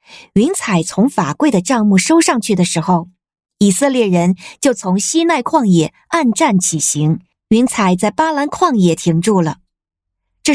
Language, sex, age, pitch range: Chinese, female, 50-69, 180-275 Hz